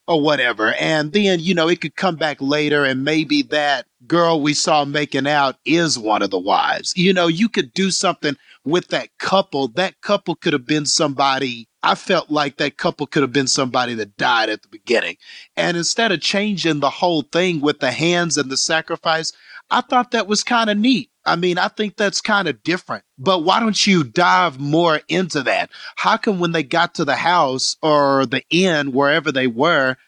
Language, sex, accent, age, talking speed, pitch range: English, male, American, 40-59, 205 wpm, 145-185 Hz